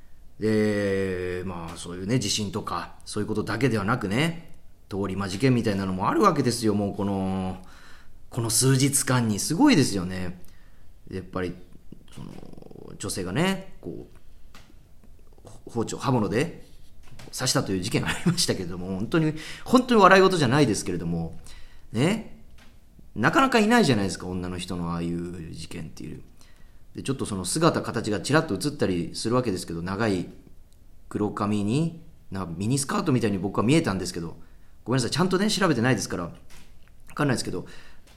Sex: male